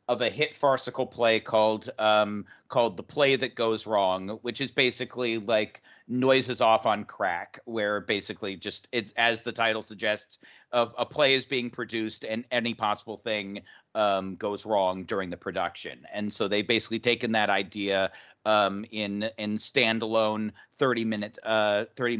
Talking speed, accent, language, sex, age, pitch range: 165 wpm, American, English, male, 40-59, 105-125 Hz